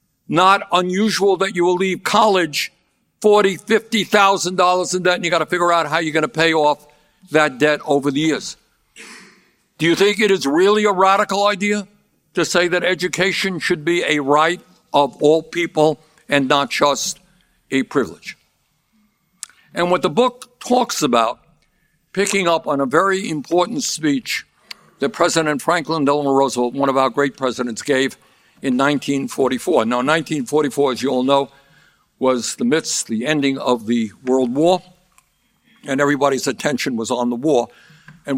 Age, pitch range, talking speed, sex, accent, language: 60-79, 140-185 Hz, 165 wpm, male, American, English